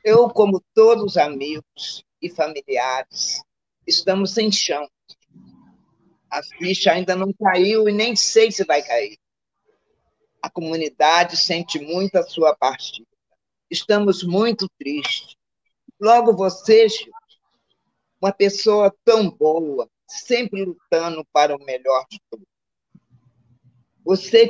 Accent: Brazilian